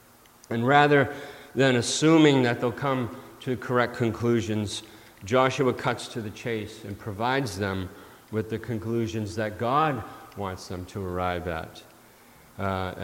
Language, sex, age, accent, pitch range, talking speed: English, male, 50-69, American, 105-125 Hz, 135 wpm